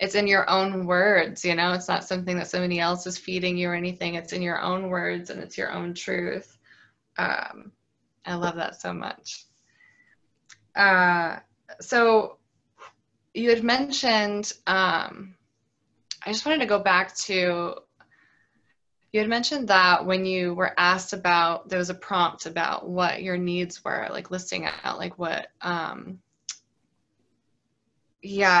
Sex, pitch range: female, 175-205 Hz